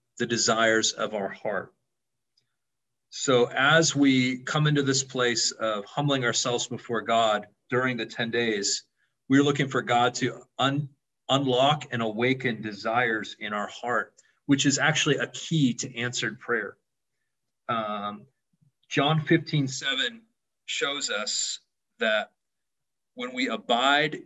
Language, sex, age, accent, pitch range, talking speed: English, male, 40-59, American, 120-140 Hz, 125 wpm